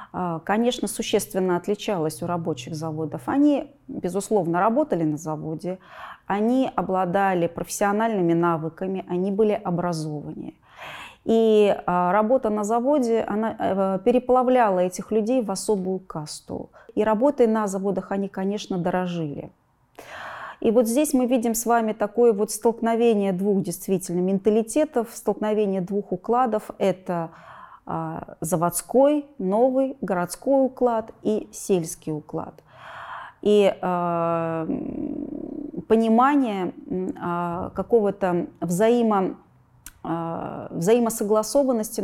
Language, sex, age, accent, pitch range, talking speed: Russian, female, 30-49, native, 175-225 Hz, 90 wpm